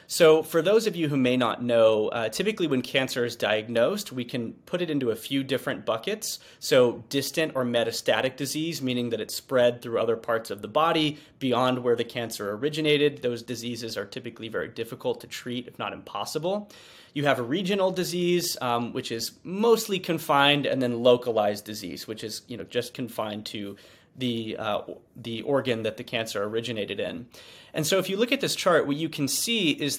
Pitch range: 120-155 Hz